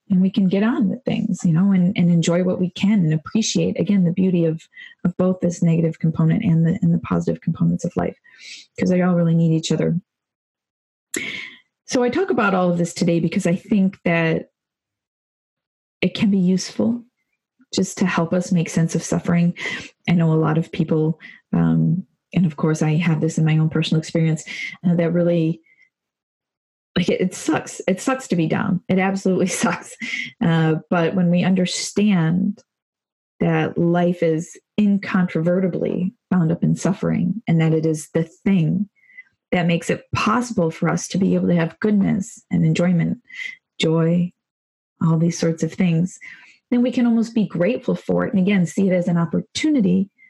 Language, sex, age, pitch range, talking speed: English, female, 20-39, 165-200 Hz, 180 wpm